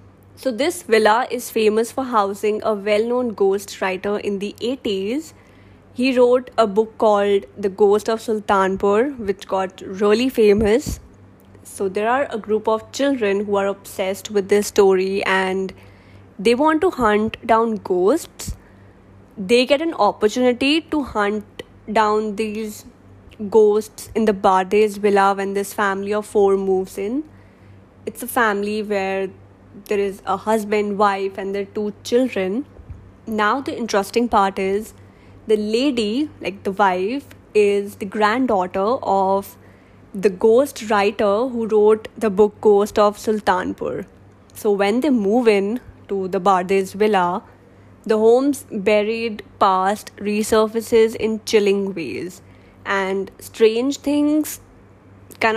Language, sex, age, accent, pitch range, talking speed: English, female, 10-29, Indian, 195-225 Hz, 135 wpm